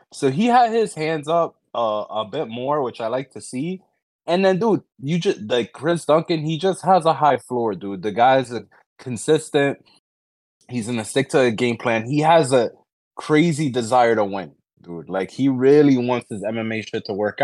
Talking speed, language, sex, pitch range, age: 195 wpm, English, male, 110-150 Hz, 20-39